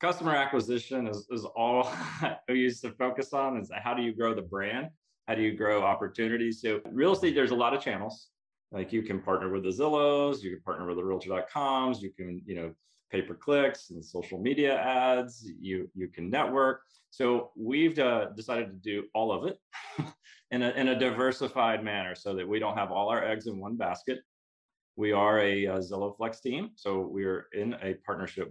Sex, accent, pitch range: male, American, 90-115 Hz